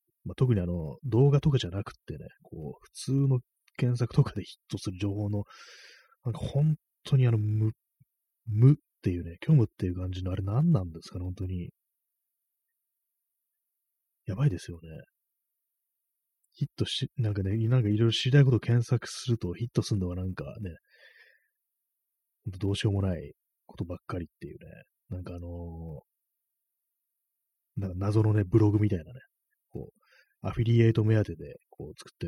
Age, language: 30-49, Japanese